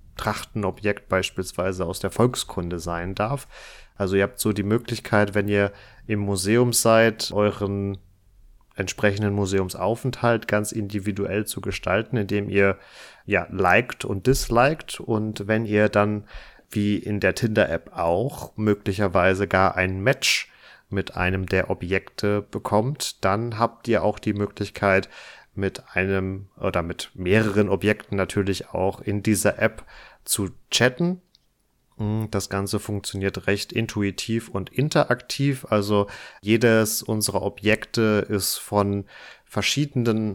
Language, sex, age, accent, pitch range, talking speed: German, male, 30-49, German, 100-115 Hz, 120 wpm